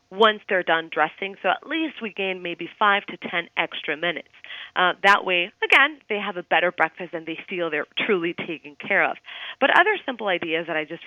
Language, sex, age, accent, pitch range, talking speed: English, female, 30-49, American, 160-200 Hz, 210 wpm